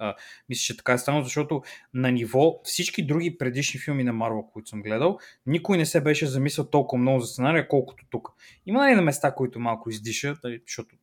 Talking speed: 205 wpm